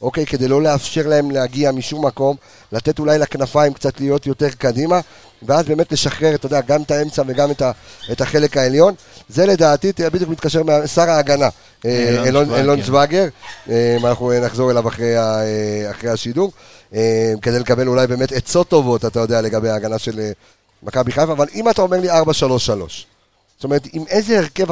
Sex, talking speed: male, 160 wpm